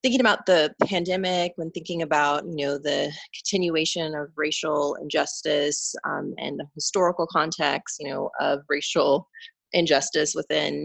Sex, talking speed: female, 140 wpm